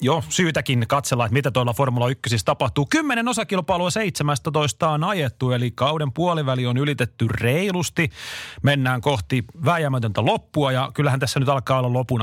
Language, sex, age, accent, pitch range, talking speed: Finnish, male, 30-49, native, 120-150 Hz, 145 wpm